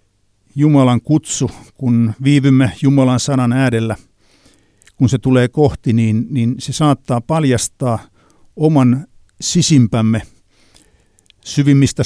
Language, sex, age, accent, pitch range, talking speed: Finnish, male, 60-79, native, 100-135 Hz, 95 wpm